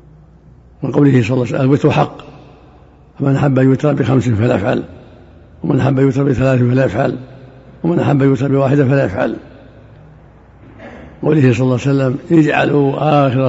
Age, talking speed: 60-79, 160 wpm